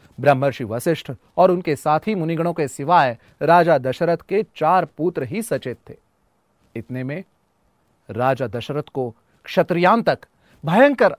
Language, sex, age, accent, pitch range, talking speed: Hindi, male, 30-49, native, 130-185 Hz, 130 wpm